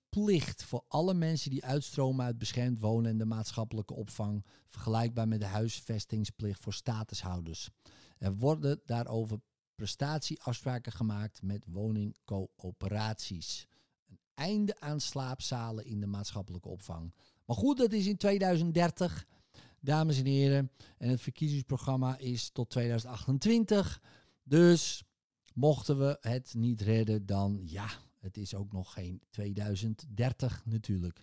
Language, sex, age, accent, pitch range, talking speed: Dutch, male, 50-69, Dutch, 110-145 Hz, 125 wpm